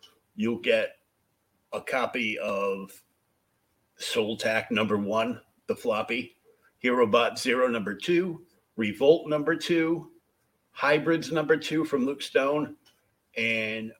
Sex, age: male, 50-69